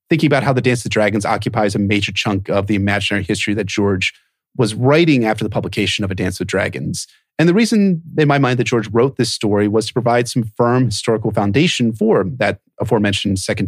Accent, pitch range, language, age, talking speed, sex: American, 105-130 Hz, English, 30-49, 220 wpm, male